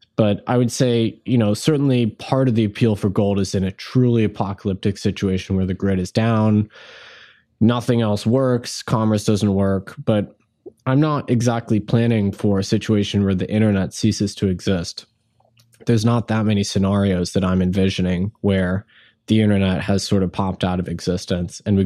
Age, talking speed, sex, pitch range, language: 20-39, 175 wpm, male, 100-120 Hz, English